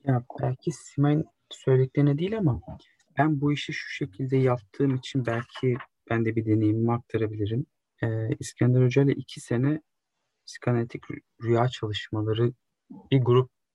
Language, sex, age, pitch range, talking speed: Turkish, male, 40-59, 110-140 Hz, 130 wpm